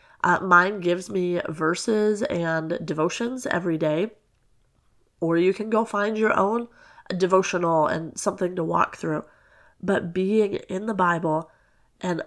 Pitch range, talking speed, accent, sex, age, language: 175-215 Hz, 135 wpm, American, female, 30-49, English